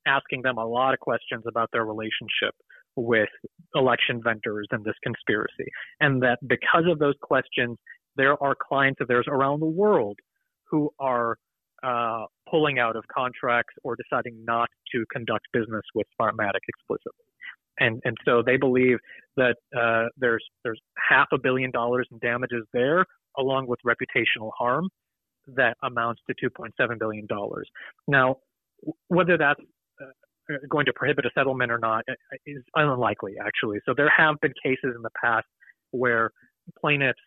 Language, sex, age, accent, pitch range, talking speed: English, male, 30-49, American, 115-140 Hz, 150 wpm